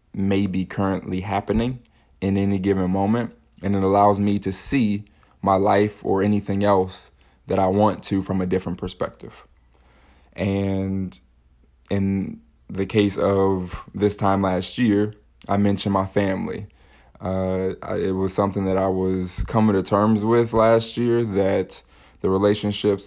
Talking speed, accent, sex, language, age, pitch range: 145 wpm, American, male, English, 20-39, 95-100 Hz